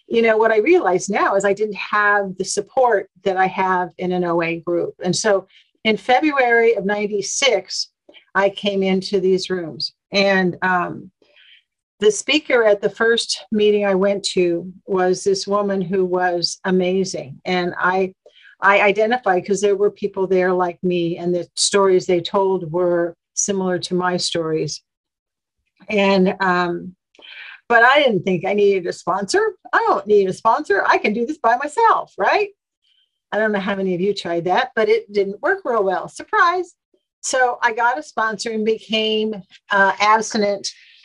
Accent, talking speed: American, 170 wpm